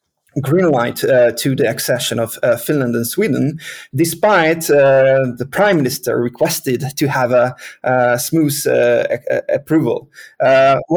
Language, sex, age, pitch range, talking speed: English, male, 30-49, 120-150 Hz, 150 wpm